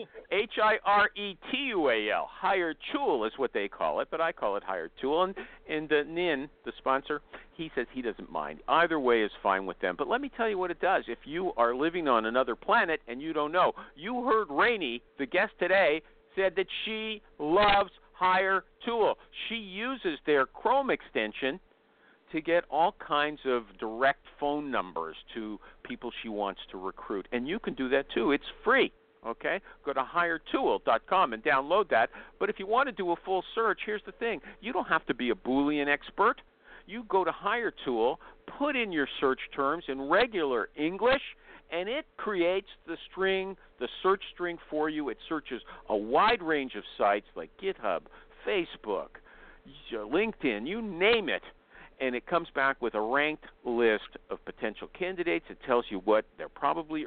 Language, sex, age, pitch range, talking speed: English, male, 50-69, 140-215 Hz, 185 wpm